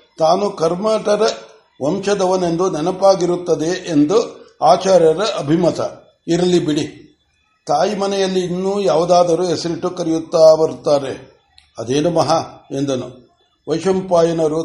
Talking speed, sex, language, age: 80 wpm, male, Kannada, 60-79